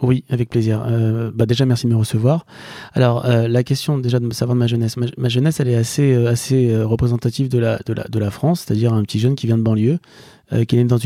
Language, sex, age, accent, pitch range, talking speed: French, male, 30-49, French, 115-130 Hz, 260 wpm